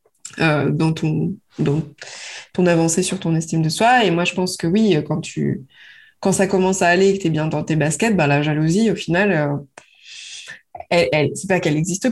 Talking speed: 210 wpm